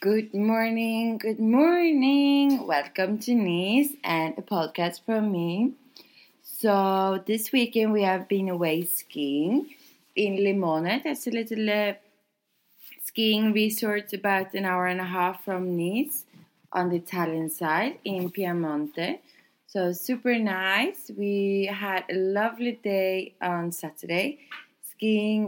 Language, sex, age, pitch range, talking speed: English, female, 20-39, 175-220 Hz, 125 wpm